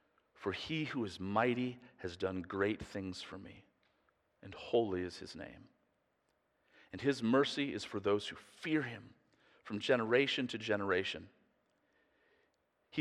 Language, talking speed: English, 140 wpm